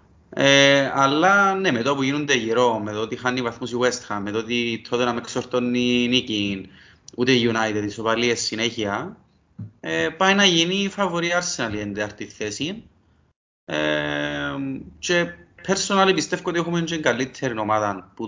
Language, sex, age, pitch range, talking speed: Greek, male, 30-49, 105-145 Hz, 160 wpm